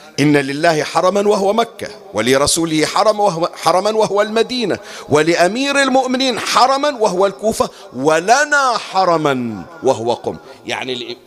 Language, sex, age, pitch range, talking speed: Arabic, male, 50-69, 130-200 Hz, 110 wpm